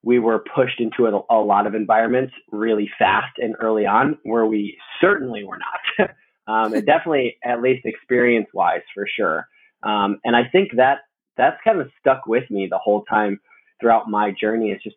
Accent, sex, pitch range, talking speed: American, male, 110-145 Hz, 190 wpm